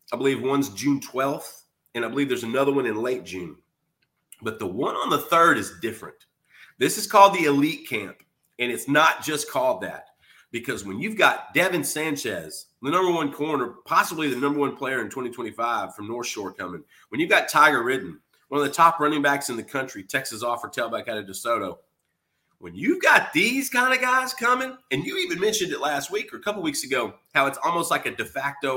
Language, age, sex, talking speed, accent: English, 30-49, male, 215 wpm, American